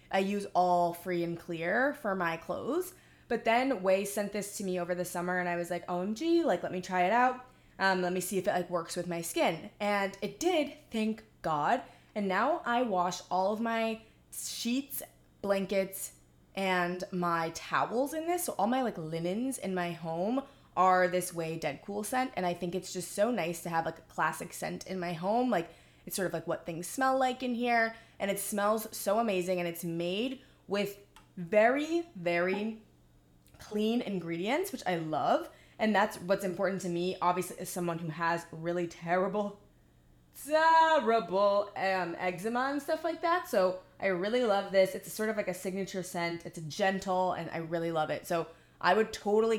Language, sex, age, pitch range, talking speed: English, female, 20-39, 175-215 Hz, 195 wpm